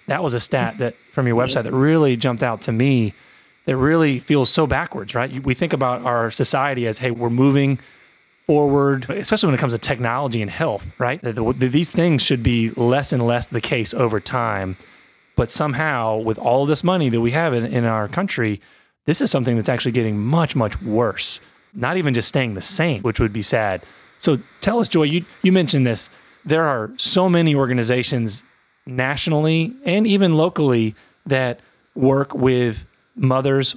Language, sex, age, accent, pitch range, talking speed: English, male, 30-49, American, 115-145 Hz, 185 wpm